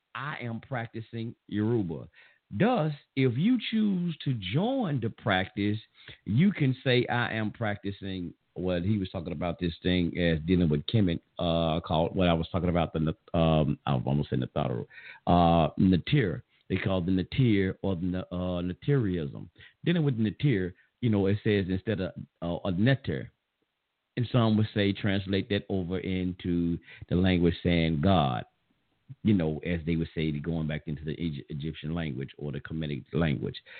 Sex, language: male, English